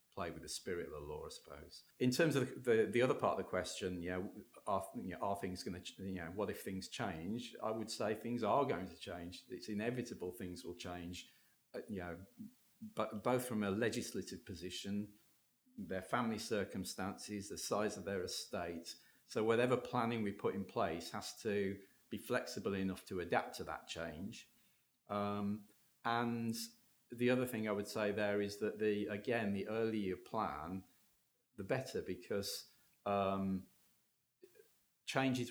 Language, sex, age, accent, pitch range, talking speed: English, male, 40-59, British, 90-115 Hz, 170 wpm